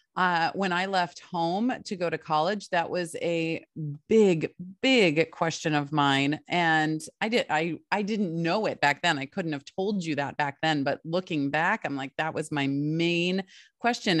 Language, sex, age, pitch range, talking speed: English, female, 30-49, 150-185 Hz, 190 wpm